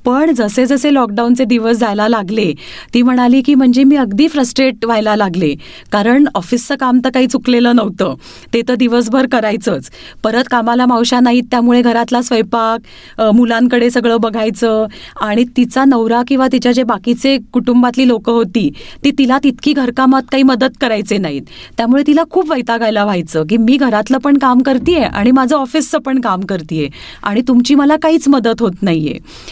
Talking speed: 135 wpm